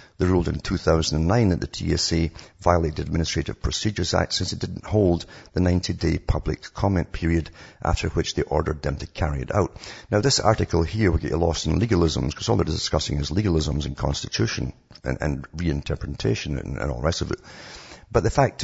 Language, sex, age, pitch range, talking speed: English, male, 60-79, 75-100 Hz, 195 wpm